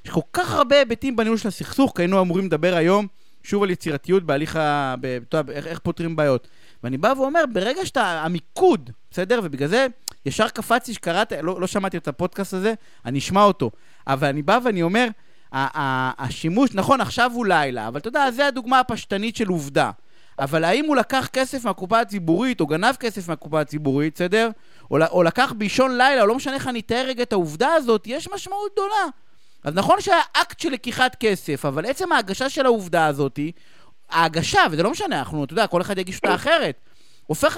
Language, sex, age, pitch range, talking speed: Hebrew, male, 30-49, 160-255 Hz, 190 wpm